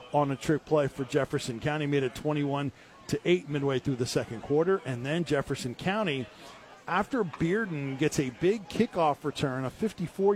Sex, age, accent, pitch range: male, 40-59, American, 145-175 Hz